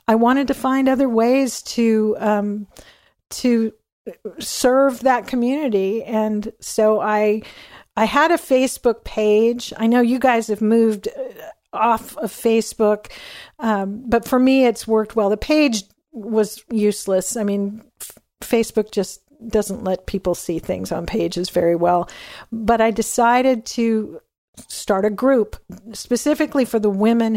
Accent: American